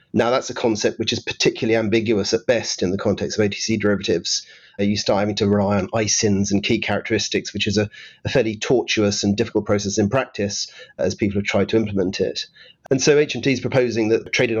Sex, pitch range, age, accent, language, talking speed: male, 105-120 Hz, 40-59, British, English, 210 wpm